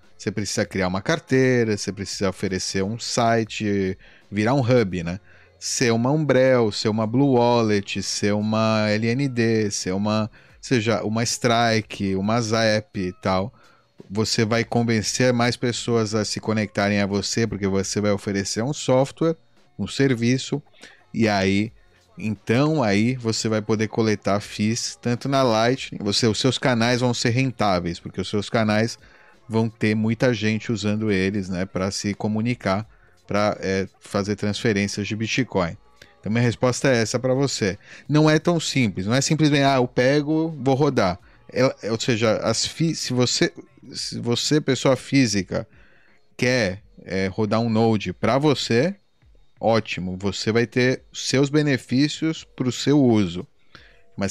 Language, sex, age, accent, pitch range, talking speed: Portuguese, male, 30-49, Brazilian, 100-125 Hz, 150 wpm